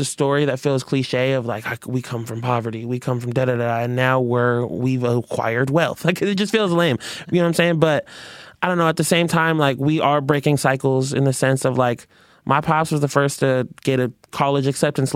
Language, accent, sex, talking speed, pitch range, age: English, American, male, 240 wpm, 125-145 Hz, 20-39